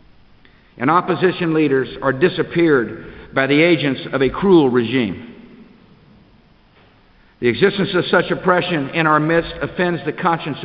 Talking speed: 130 wpm